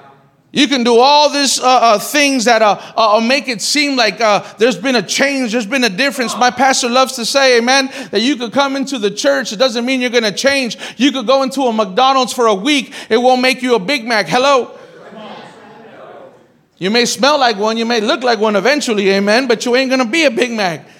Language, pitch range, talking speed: English, 230-275 Hz, 235 wpm